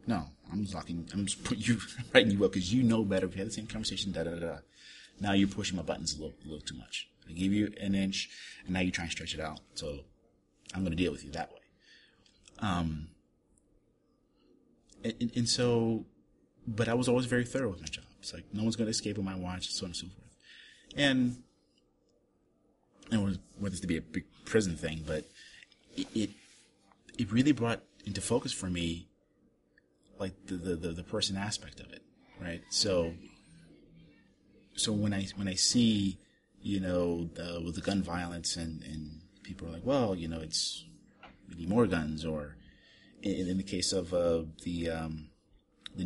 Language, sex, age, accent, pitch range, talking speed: English, male, 30-49, American, 85-105 Hz, 195 wpm